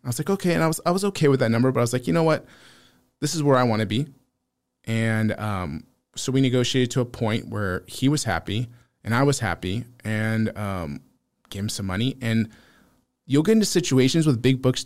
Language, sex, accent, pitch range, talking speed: English, male, American, 105-130 Hz, 230 wpm